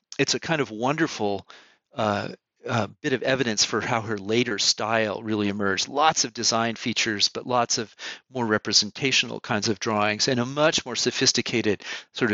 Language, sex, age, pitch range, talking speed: English, male, 40-59, 110-135 Hz, 170 wpm